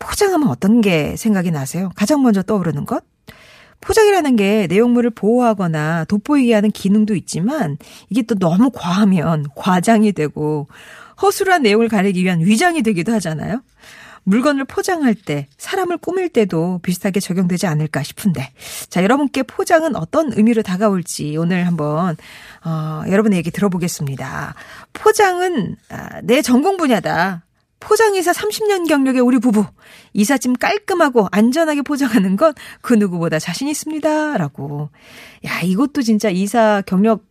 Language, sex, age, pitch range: Korean, female, 40-59, 180-285 Hz